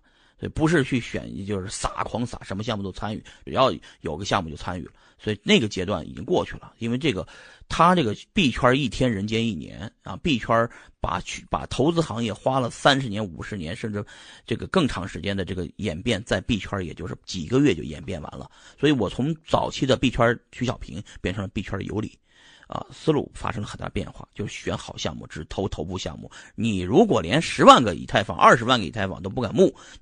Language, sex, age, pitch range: Chinese, male, 30-49, 95-125 Hz